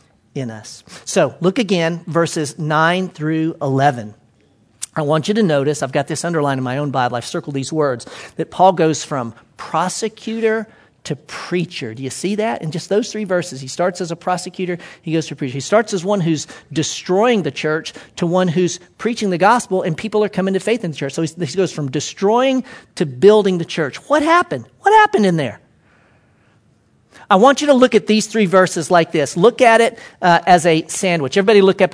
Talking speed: 205 wpm